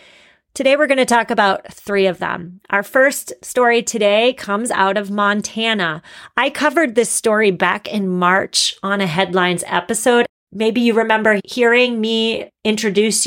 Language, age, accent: English, 30-49, American